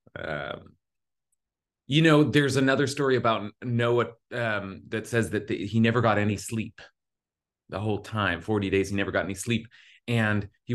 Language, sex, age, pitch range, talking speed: English, male, 30-49, 100-125 Hz, 165 wpm